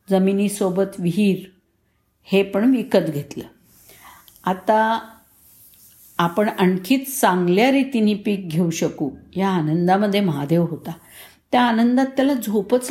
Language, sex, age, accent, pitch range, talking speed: Marathi, female, 50-69, native, 175-220 Hz, 105 wpm